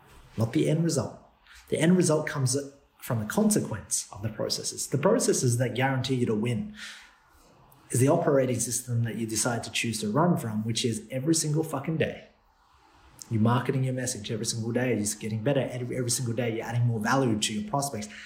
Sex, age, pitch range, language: male, 30-49, 120-140 Hz, English